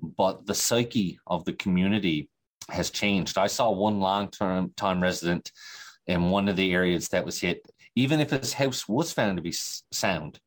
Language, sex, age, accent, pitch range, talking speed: English, male, 30-49, American, 90-105 Hz, 170 wpm